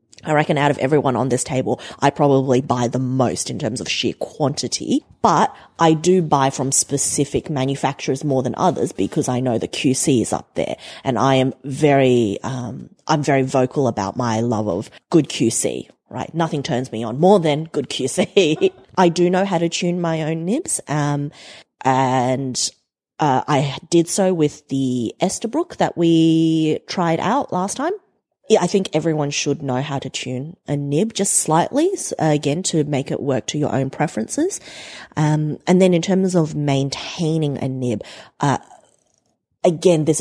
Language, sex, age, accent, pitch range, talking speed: English, female, 30-49, Australian, 130-165 Hz, 175 wpm